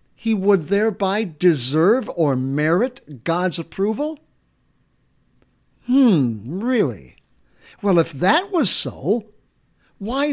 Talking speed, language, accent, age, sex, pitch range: 95 wpm, English, American, 60-79, male, 150-220 Hz